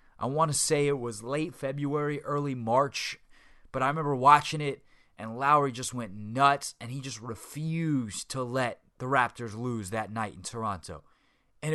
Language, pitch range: English, 105-140 Hz